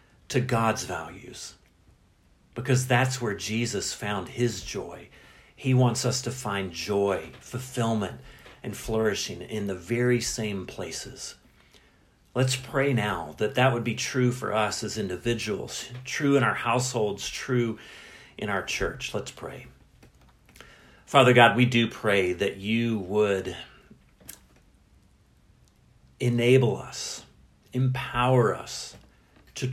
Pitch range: 105-130 Hz